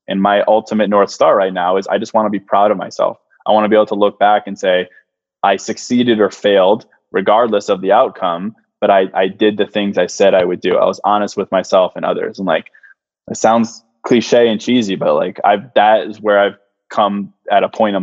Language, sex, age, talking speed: English, male, 20-39, 235 wpm